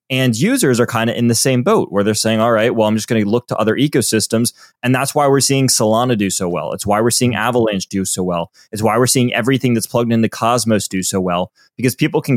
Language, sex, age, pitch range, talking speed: English, male, 20-39, 110-135 Hz, 265 wpm